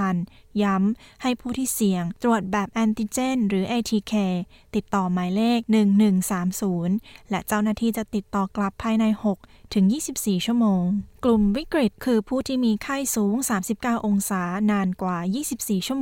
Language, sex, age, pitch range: Thai, female, 20-39, 190-230 Hz